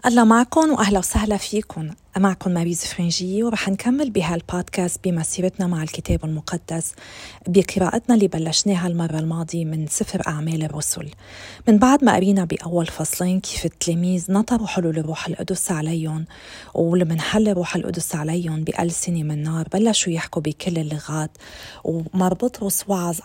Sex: female